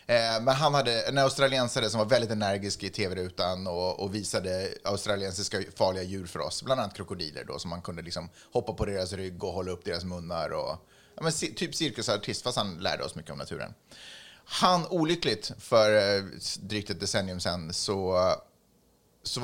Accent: native